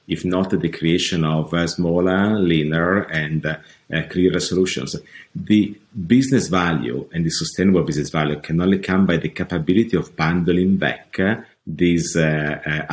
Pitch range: 80-95 Hz